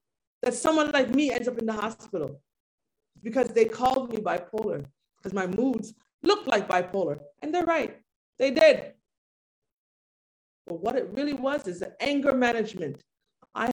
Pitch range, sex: 190-255 Hz, female